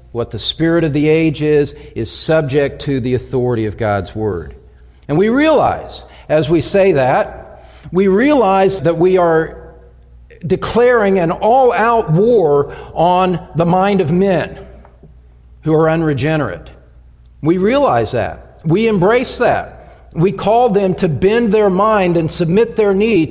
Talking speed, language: 145 wpm, English